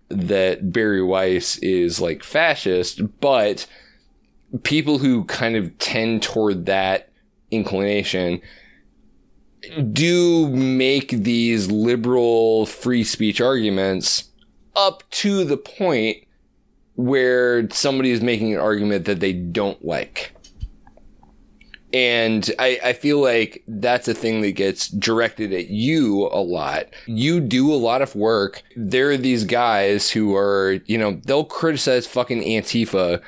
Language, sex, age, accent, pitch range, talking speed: English, male, 20-39, American, 105-140 Hz, 125 wpm